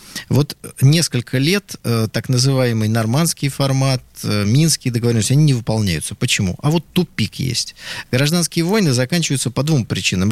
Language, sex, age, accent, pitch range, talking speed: Russian, male, 20-39, native, 110-140 Hz, 145 wpm